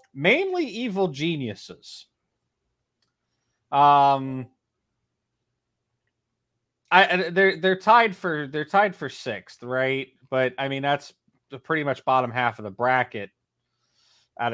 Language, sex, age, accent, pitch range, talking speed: English, male, 30-49, American, 120-145 Hz, 110 wpm